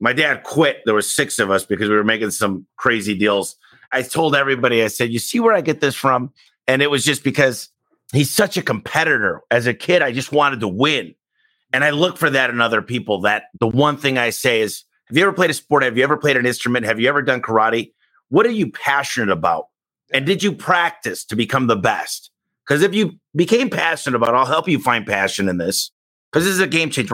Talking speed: 240 wpm